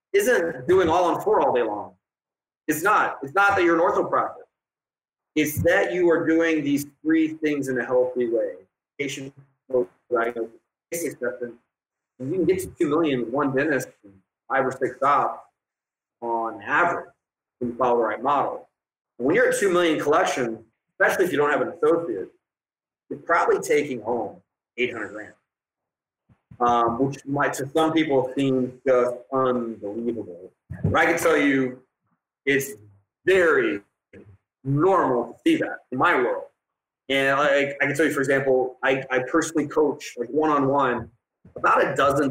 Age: 30-49